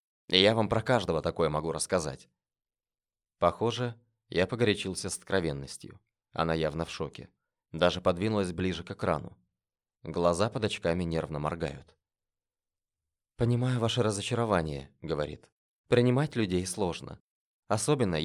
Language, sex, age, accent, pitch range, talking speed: Russian, male, 20-39, native, 85-115 Hz, 110 wpm